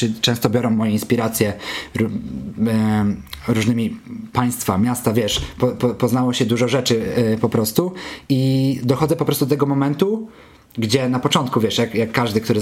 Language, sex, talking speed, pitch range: Polish, male, 145 wpm, 110-135 Hz